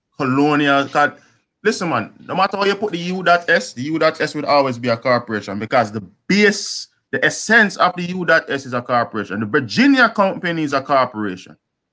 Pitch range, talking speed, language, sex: 130-180 Hz, 170 wpm, English, male